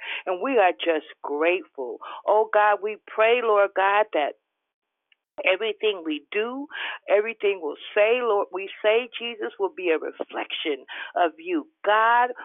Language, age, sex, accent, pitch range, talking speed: English, 50-69, female, American, 190-290 Hz, 145 wpm